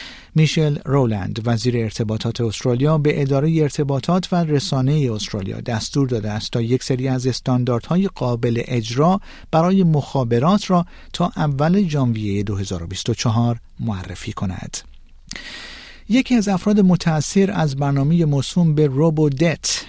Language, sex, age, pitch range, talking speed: Persian, male, 50-69, 120-155 Hz, 120 wpm